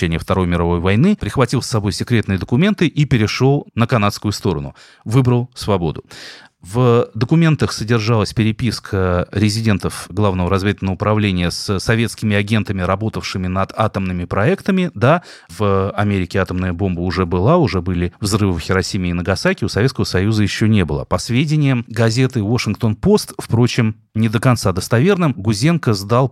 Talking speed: 140 wpm